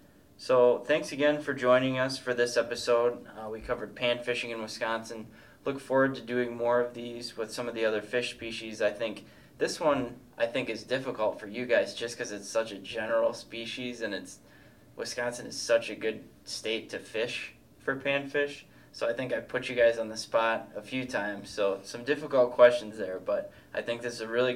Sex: male